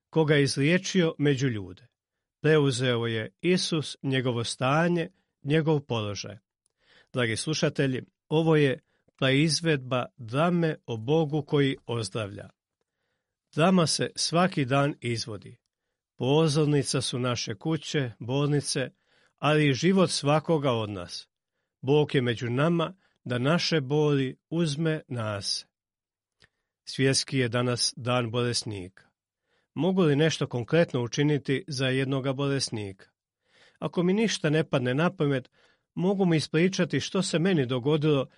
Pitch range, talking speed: 125-160 Hz, 115 wpm